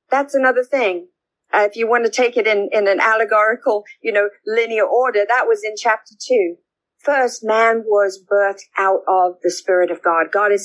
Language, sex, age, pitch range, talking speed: English, female, 50-69, 190-250 Hz, 195 wpm